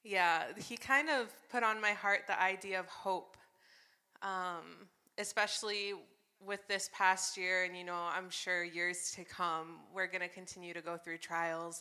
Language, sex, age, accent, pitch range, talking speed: English, female, 20-39, American, 180-210 Hz, 175 wpm